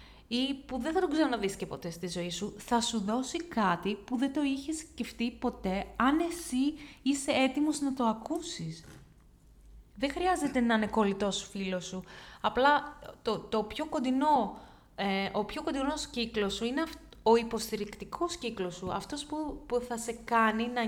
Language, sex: Greek, female